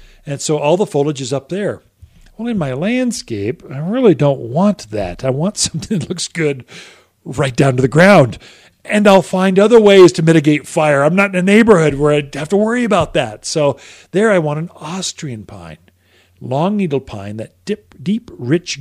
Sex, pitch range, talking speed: male, 130-175 Hz, 200 wpm